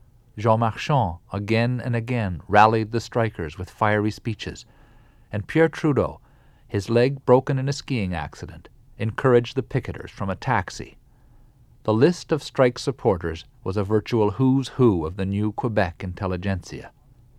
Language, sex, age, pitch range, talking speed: English, male, 50-69, 105-130 Hz, 145 wpm